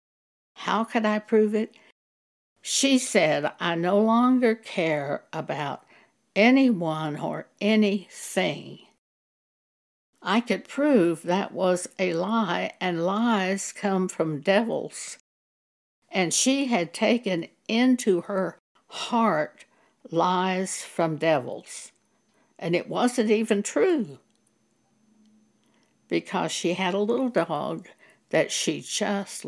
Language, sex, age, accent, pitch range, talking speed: English, female, 60-79, American, 180-230 Hz, 105 wpm